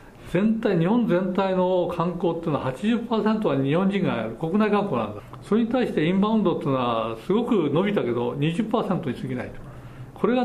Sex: male